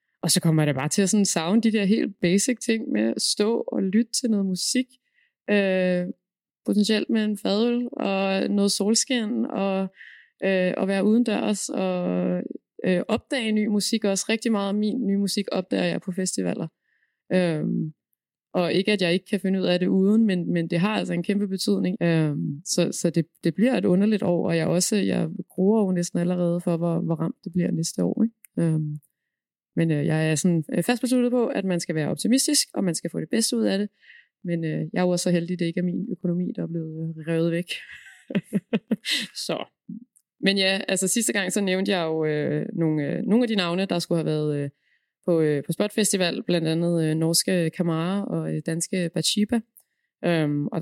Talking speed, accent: 205 wpm, native